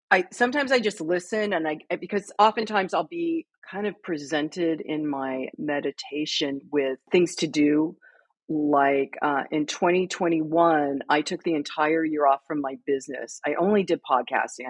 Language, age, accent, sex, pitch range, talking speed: English, 40-59, American, female, 160-205 Hz, 155 wpm